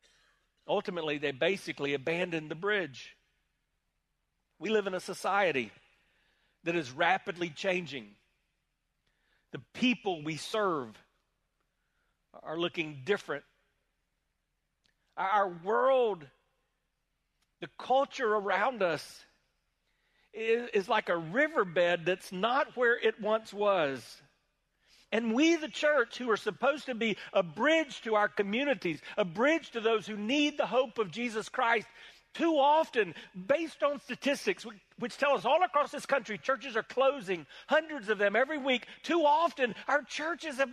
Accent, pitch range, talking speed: American, 190-275 Hz, 130 wpm